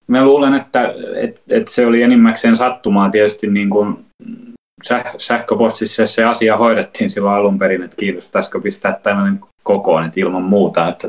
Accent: native